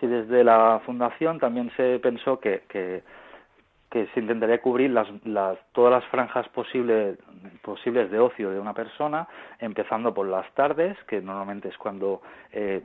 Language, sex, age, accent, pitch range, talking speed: Spanish, male, 30-49, Spanish, 105-125 Hz, 160 wpm